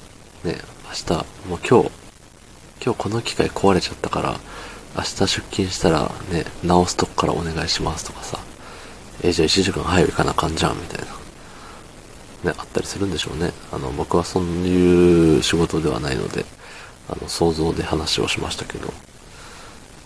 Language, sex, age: Japanese, male, 40-59